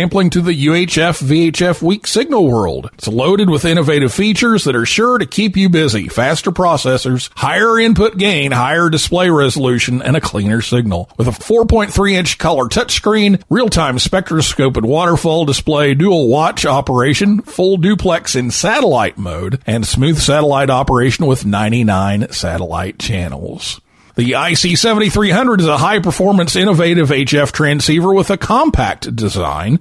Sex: male